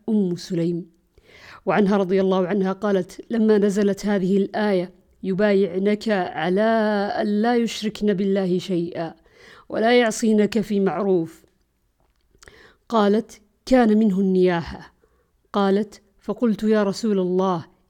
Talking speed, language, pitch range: 105 wpm, Arabic, 185-210 Hz